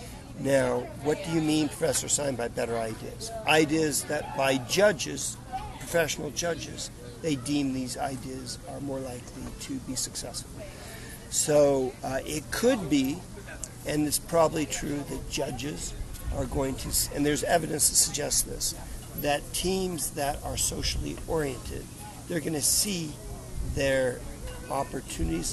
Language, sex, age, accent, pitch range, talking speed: English, male, 50-69, American, 125-155 Hz, 135 wpm